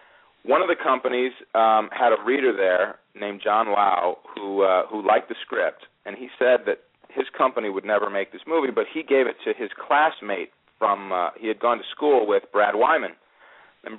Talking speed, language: 200 wpm, English